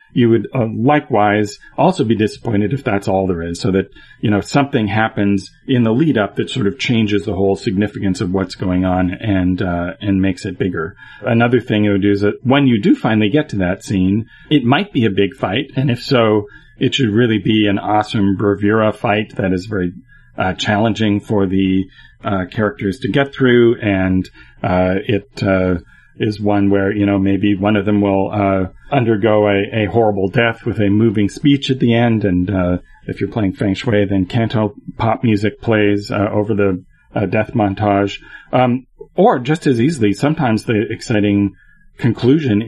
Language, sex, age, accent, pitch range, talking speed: English, male, 40-59, American, 100-115 Hz, 195 wpm